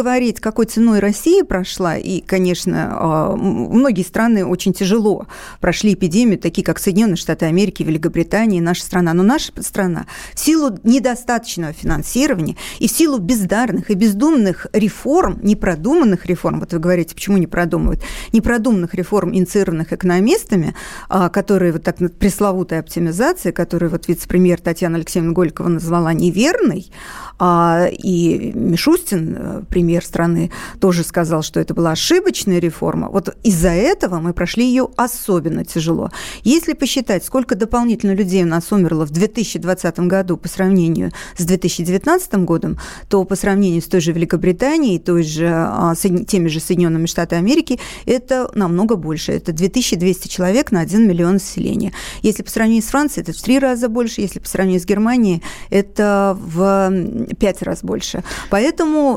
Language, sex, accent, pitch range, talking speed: Russian, female, native, 175-225 Hz, 140 wpm